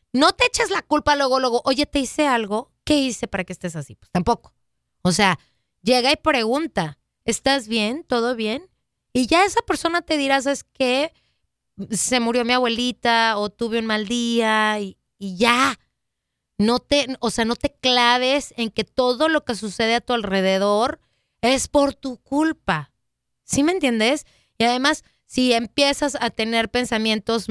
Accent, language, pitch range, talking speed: Mexican, Spanish, 205-260 Hz, 170 wpm